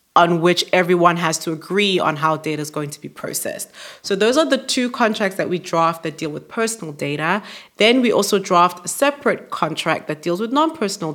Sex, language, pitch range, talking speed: female, English, 165-205 Hz, 210 wpm